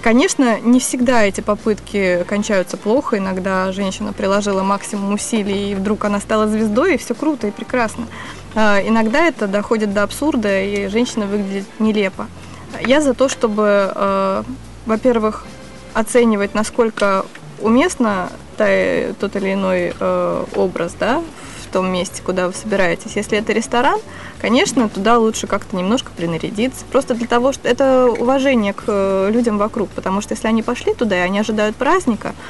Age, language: 20-39, Russian